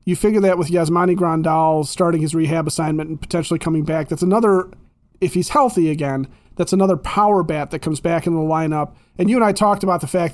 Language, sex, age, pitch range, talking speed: English, male, 30-49, 155-190 Hz, 220 wpm